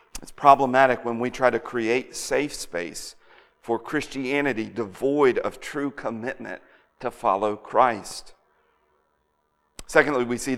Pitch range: 135-175 Hz